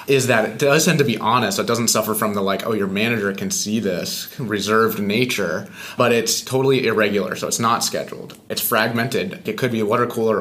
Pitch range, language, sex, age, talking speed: 105-125 Hz, English, male, 30-49, 225 wpm